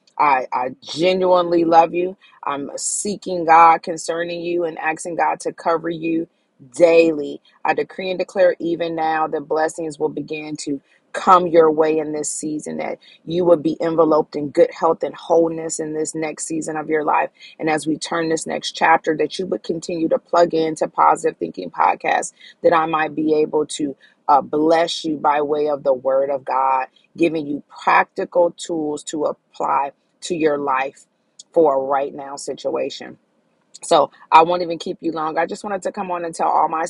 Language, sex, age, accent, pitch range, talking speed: English, female, 30-49, American, 155-175 Hz, 185 wpm